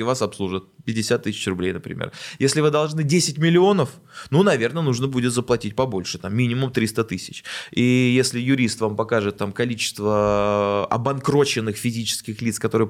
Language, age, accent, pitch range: Russian, 20-39, native, 115-150 Hz